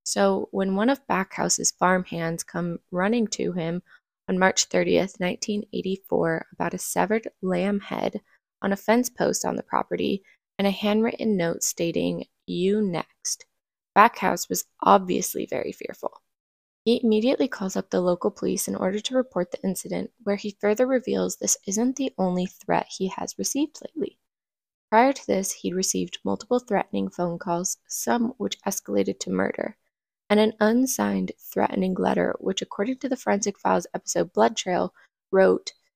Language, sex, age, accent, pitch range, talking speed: English, female, 20-39, American, 175-225 Hz, 155 wpm